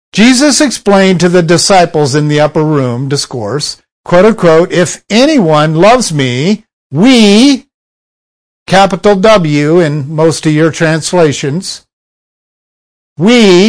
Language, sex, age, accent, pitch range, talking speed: English, male, 50-69, American, 145-195 Hz, 110 wpm